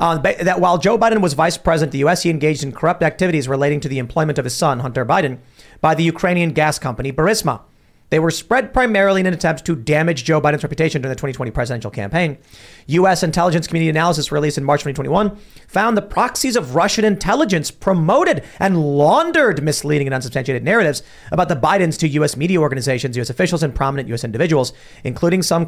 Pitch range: 145-200 Hz